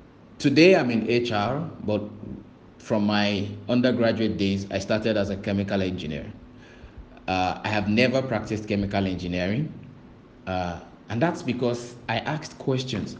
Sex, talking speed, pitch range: male, 130 wpm, 105-130 Hz